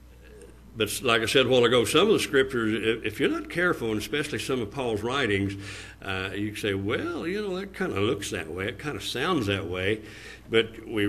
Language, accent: English, American